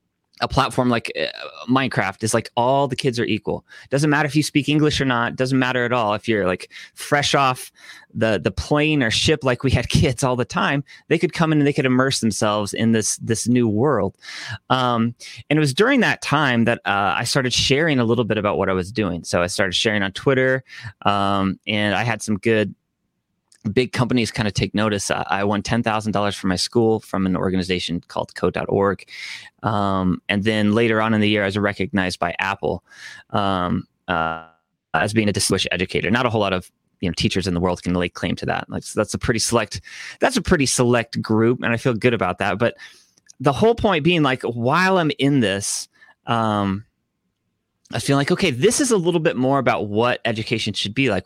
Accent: American